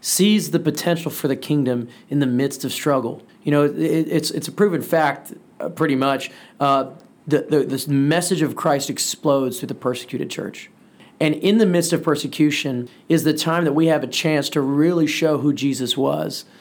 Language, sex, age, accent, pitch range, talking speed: English, male, 30-49, American, 140-170 Hz, 195 wpm